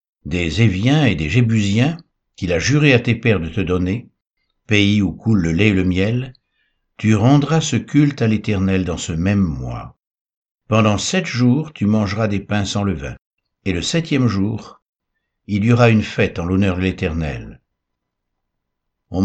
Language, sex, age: French, male, 60-79